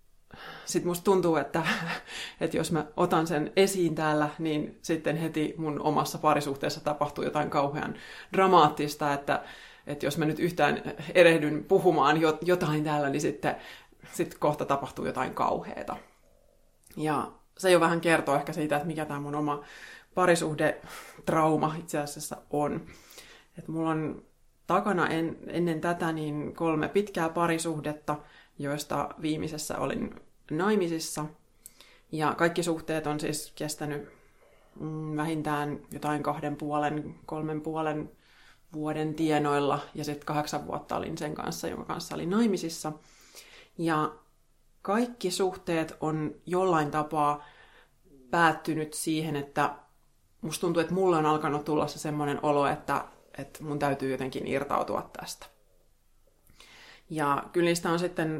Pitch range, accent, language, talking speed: 150-165 Hz, native, Finnish, 125 wpm